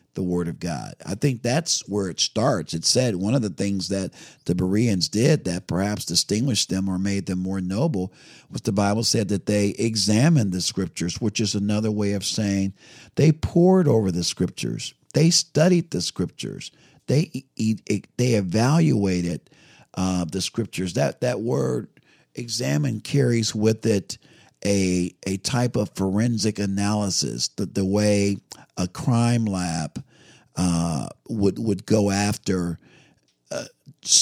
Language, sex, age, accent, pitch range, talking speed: English, male, 50-69, American, 90-115 Hz, 145 wpm